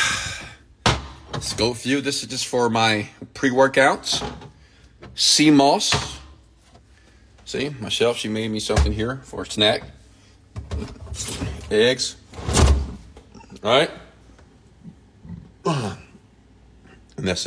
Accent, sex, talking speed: American, male, 95 wpm